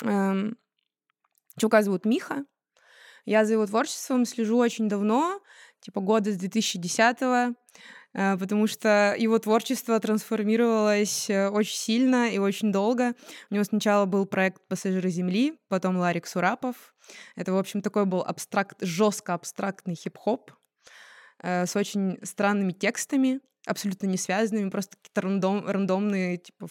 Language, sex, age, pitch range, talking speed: Russian, female, 20-39, 190-230 Hz, 120 wpm